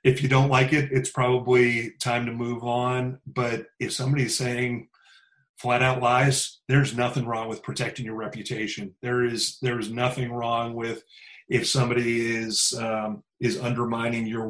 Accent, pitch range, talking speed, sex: American, 115-130 Hz, 160 wpm, male